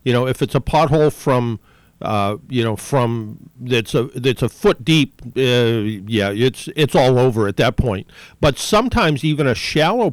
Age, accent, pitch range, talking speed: 50-69, American, 120-150 Hz, 185 wpm